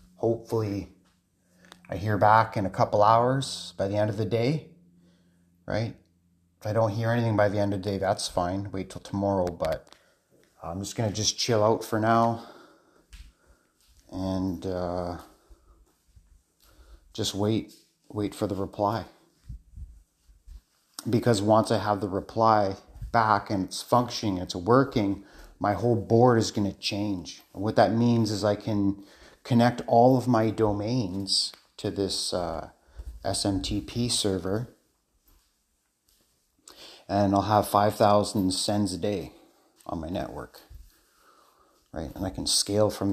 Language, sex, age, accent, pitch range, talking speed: English, male, 30-49, American, 95-110 Hz, 140 wpm